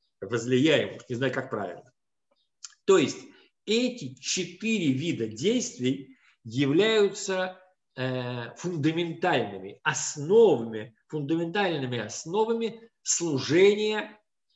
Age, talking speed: 50-69, 75 wpm